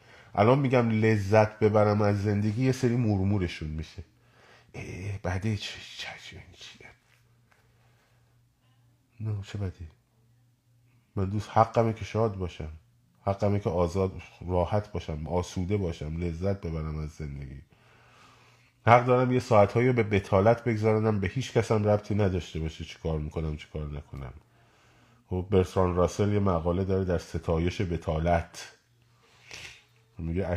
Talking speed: 120 wpm